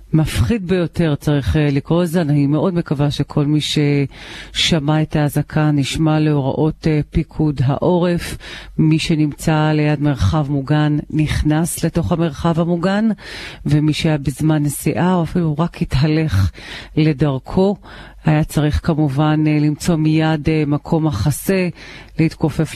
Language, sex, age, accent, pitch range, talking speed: Hebrew, female, 40-59, native, 150-170 Hz, 115 wpm